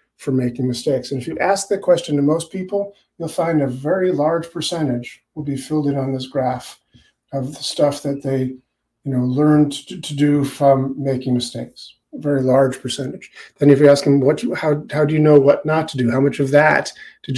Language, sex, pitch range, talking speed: English, male, 135-165 Hz, 220 wpm